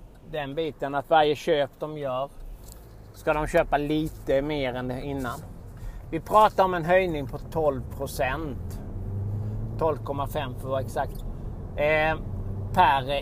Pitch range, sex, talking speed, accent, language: 115-160 Hz, male, 125 wpm, native, Swedish